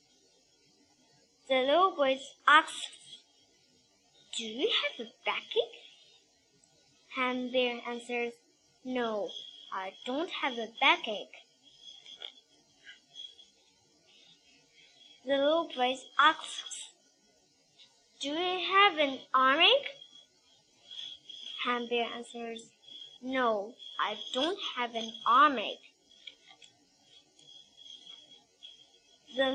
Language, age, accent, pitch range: Chinese, 10-29, American, 235-300 Hz